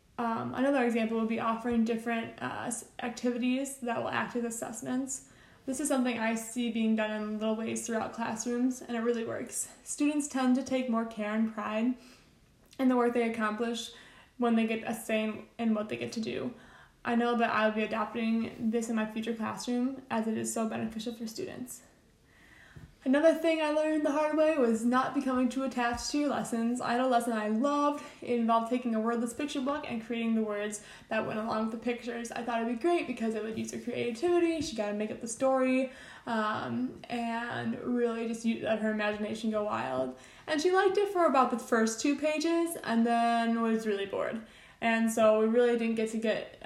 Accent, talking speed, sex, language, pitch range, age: American, 210 wpm, female, English, 225-255 Hz, 20-39